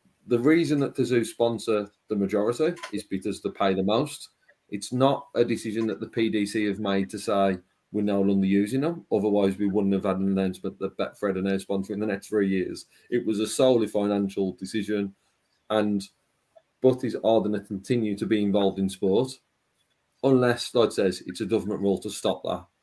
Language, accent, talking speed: English, British, 200 wpm